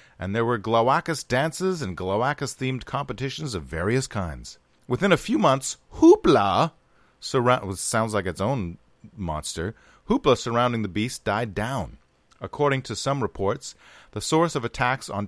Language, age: English, 40-59